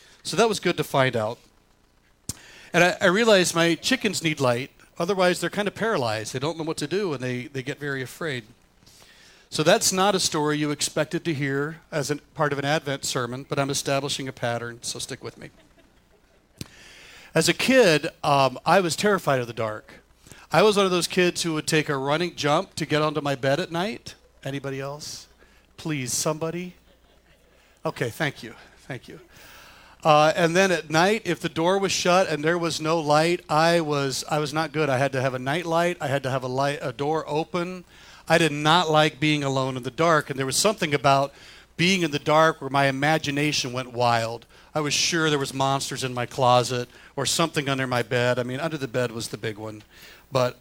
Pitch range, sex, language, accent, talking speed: 130-165 Hz, male, English, American, 210 wpm